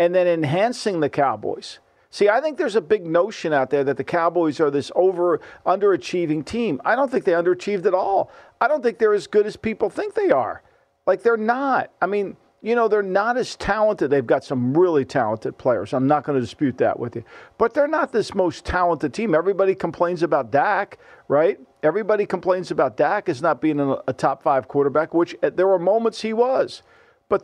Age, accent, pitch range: 50-69, American, 155-215 Hz